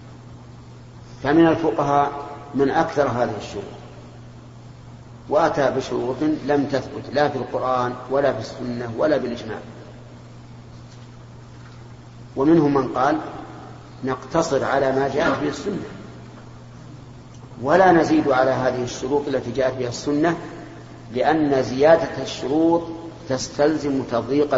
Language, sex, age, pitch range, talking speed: Arabic, male, 50-69, 120-145 Hz, 105 wpm